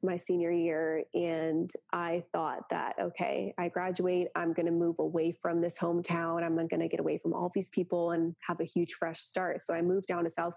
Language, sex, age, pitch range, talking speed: English, female, 20-39, 165-180 Hz, 225 wpm